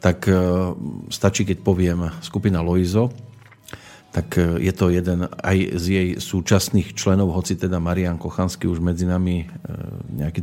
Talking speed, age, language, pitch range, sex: 130 wpm, 40-59, Slovak, 90-100 Hz, male